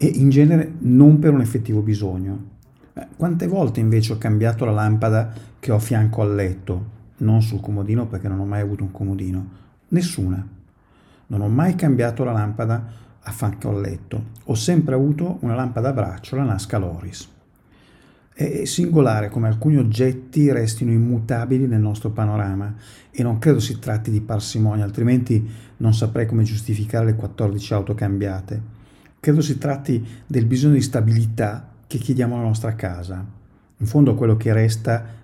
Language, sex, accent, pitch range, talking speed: Italian, male, native, 105-130 Hz, 160 wpm